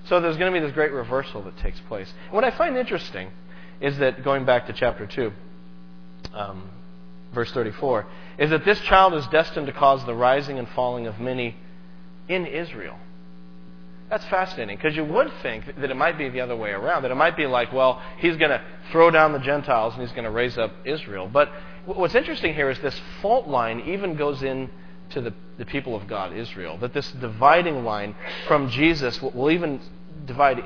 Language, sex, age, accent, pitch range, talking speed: English, male, 40-59, American, 110-170 Hz, 200 wpm